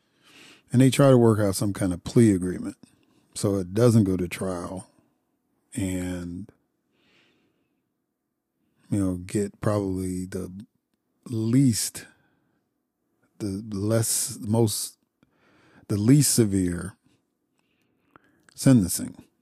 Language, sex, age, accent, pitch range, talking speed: English, male, 50-69, American, 95-110 Hz, 95 wpm